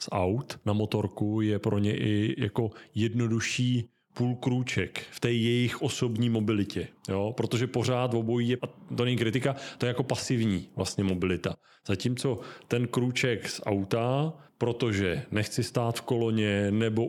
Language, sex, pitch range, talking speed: Czech, male, 105-125 Hz, 150 wpm